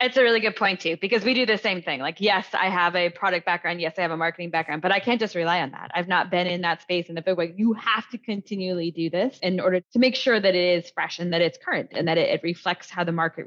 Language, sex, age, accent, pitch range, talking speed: English, female, 20-39, American, 170-225 Hz, 305 wpm